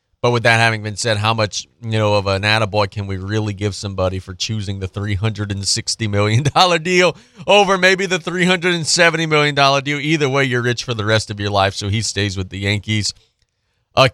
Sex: male